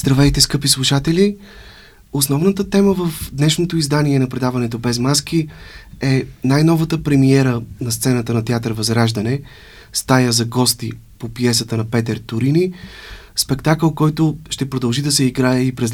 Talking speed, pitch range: 140 wpm, 115-140 Hz